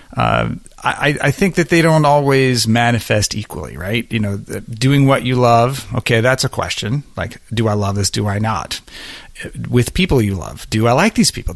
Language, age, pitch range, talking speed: English, 40-59, 110-140 Hz, 195 wpm